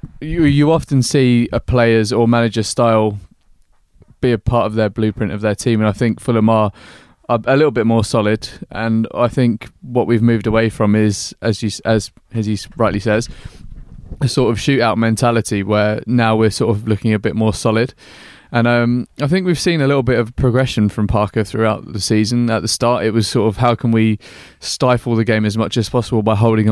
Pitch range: 105-120 Hz